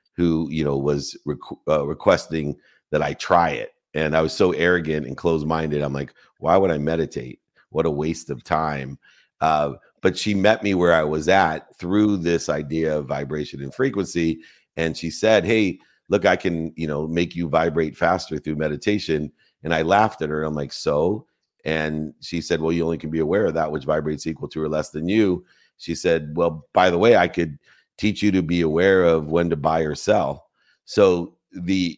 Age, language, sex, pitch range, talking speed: 50-69, English, male, 75-90 Hz, 205 wpm